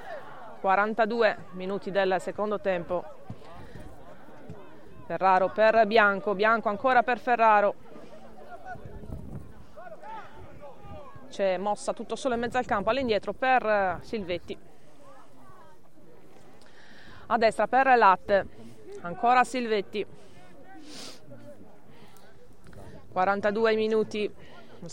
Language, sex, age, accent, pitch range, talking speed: Italian, female, 20-39, native, 195-255 Hz, 75 wpm